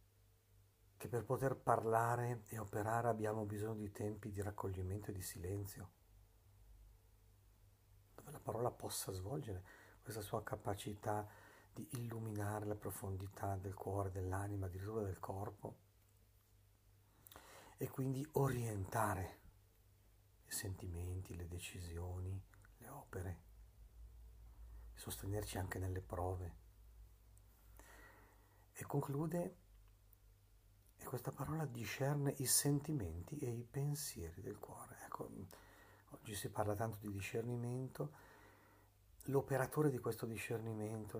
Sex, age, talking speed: male, 50-69, 100 wpm